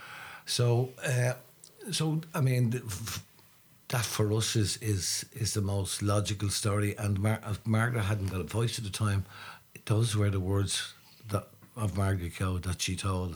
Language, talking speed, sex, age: English, 165 wpm, male, 60-79